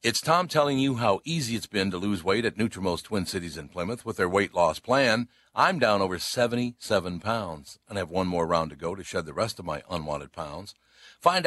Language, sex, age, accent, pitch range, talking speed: English, male, 60-79, American, 90-125 Hz, 225 wpm